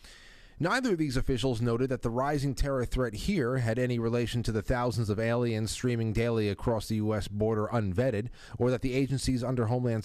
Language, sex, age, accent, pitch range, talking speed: English, male, 30-49, American, 110-135 Hz, 190 wpm